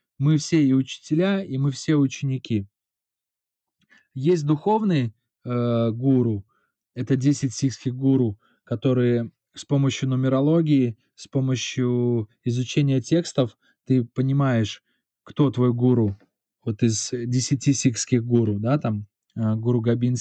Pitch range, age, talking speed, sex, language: 120-150 Hz, 20-39, 115 wpm, male, Russian